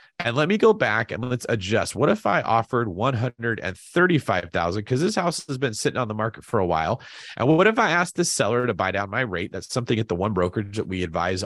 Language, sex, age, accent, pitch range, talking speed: English, male, 30-49, American, 105-150 Hz, 240 wpm